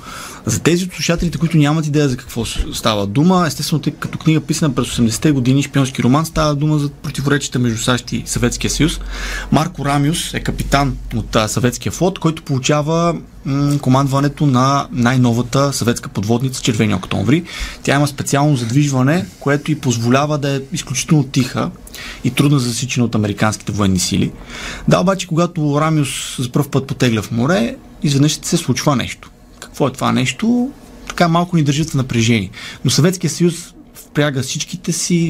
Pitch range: 120-155 Hz